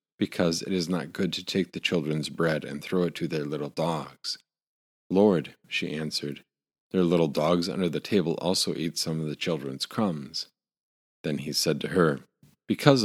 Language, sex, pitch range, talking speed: English, male, 75-95 Hz, 180 wpm